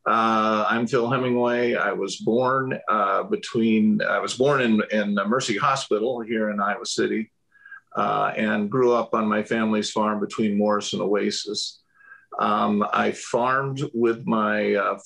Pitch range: 105-120 Hz